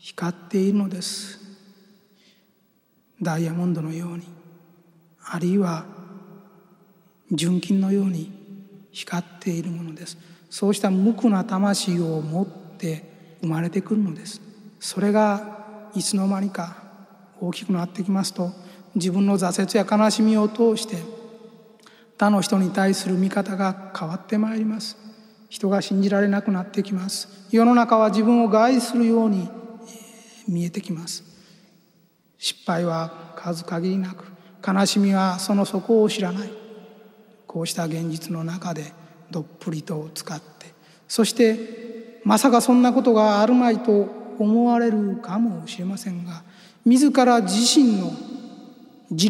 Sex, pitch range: male, 180-220 Hz